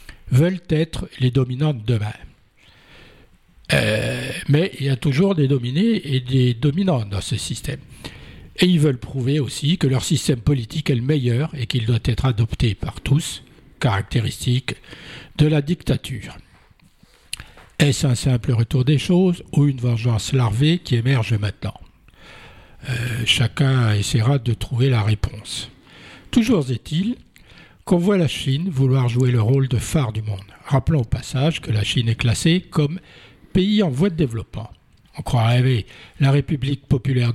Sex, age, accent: male, 60-79, French